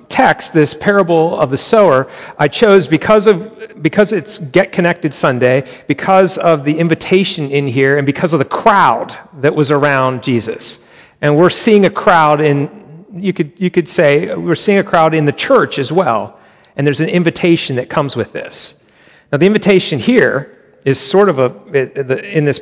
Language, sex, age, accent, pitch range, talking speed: English, male, 40-59, American, 135-185 Hz, 180 wpm